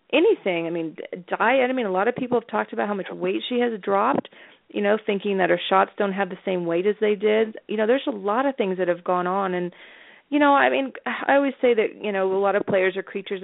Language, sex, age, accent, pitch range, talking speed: English, female, 30-49, American, 185-220 Hz, 270 wpm